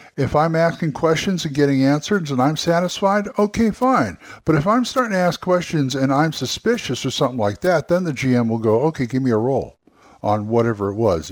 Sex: male